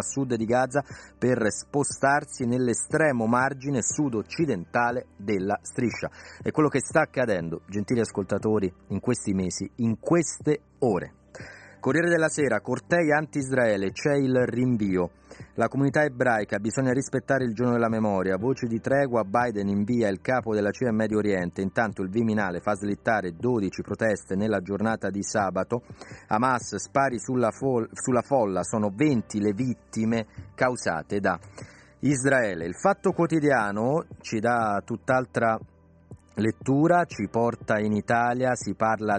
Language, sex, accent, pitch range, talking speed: Italian, male, native, 100-125 Hz, 140 wpm